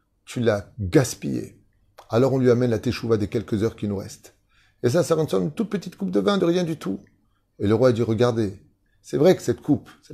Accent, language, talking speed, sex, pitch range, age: French, French, 245 wpm, male, 100-120 Hz, 30-49